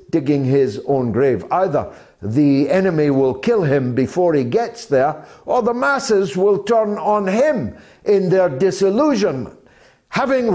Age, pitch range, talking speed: 60-79, 160-220 Hz, 140 wpm